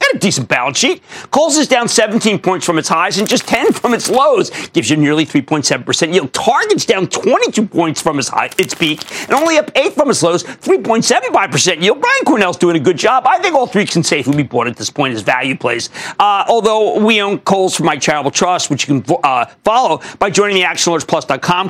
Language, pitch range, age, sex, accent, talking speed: English, 155-230 Hz, 40-59, male, American, 220 wpm